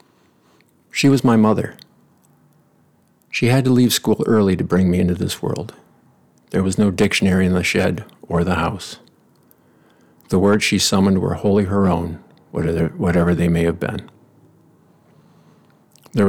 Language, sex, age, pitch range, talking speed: English, male, 50-69, 85-100 Hz, 145 wpm